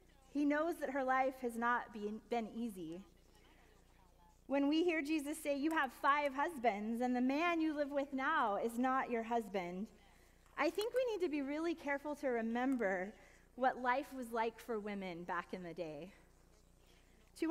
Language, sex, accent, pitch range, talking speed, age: English, female, American, 220-290 Hz, 170 wpm, 30-49